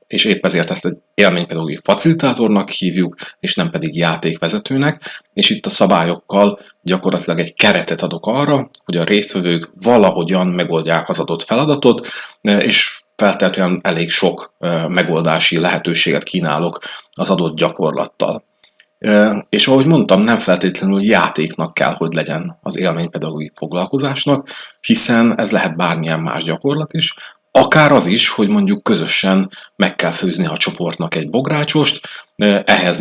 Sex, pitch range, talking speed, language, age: male, 85-135 Hz, 130 wpm, Hungarian, 30-49